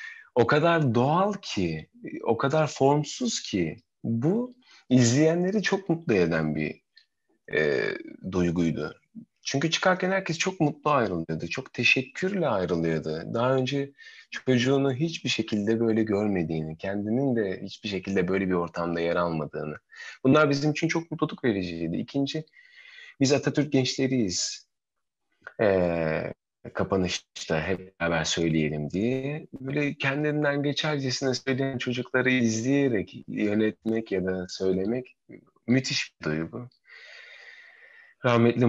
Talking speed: 110 wpm